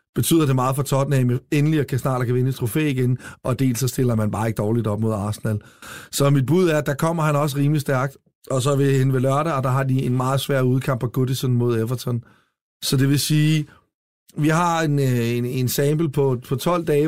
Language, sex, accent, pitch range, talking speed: Danish, male, native, 120-145 Hz, 235 wpm